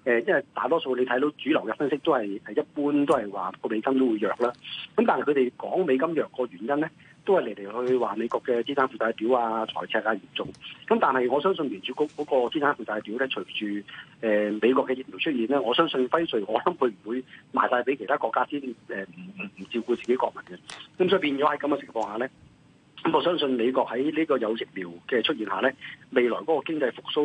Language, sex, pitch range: Chinese, male, 115-150 Hz